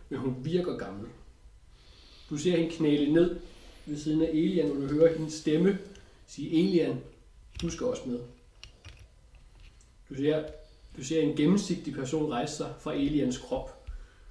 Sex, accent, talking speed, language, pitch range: male, native, 150 wpm, Danish, 125-165 Hz